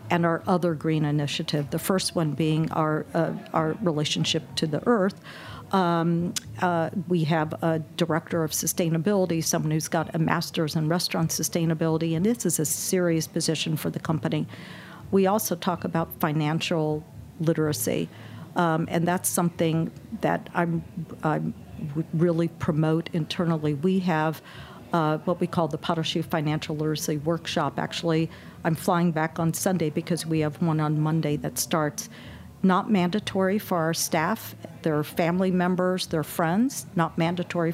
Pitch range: 160-180 Hz